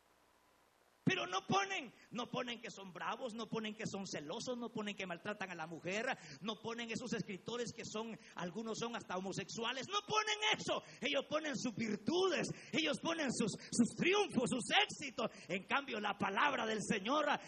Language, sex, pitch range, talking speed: Spanish, male, 225-295 Hz, 170 wpm